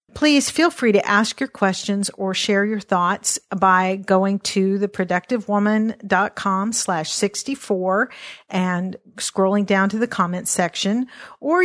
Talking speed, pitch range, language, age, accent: 130 wpm, 185-220 Hz, English, 50-69, American